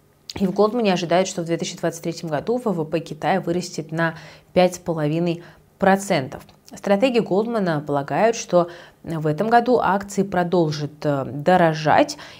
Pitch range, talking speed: 160-195 Hz, 110 wpm